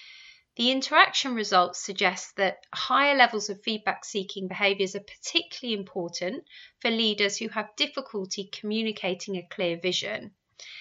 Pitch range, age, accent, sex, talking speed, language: 195-250 Hz, 30-49, British, female, 120 wpm, English